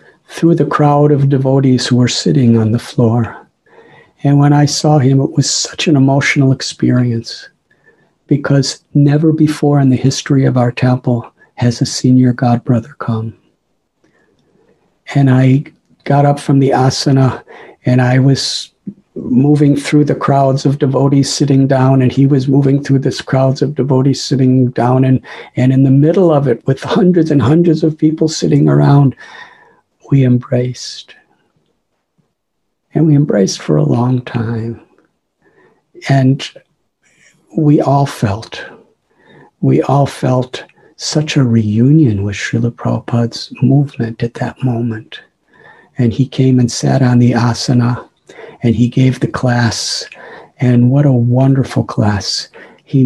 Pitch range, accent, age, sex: 125-145 Hz, American, 50-69, male